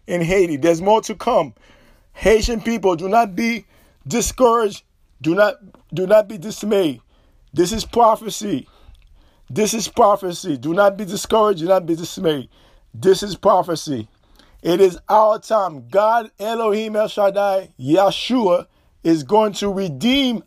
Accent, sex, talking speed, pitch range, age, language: American, male, 140 wpm, 180-225 Hz, 50-69, English